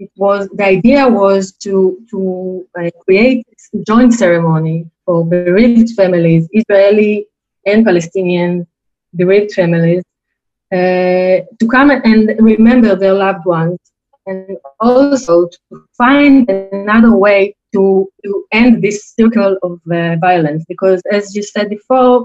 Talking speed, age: 125 wpm, 30-49